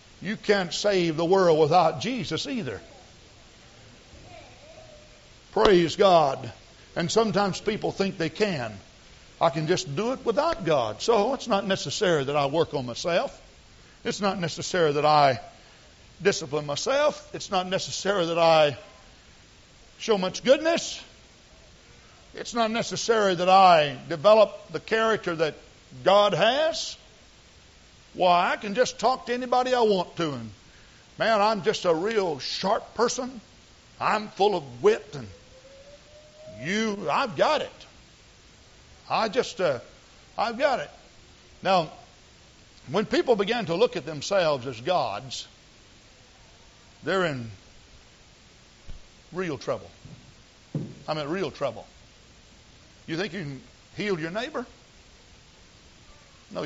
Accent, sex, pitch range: American, male, 145-215 Hz